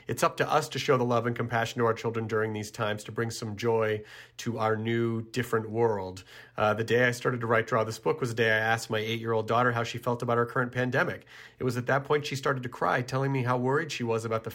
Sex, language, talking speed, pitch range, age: male, English, 275 wpm, 110-130 Hz, 40-59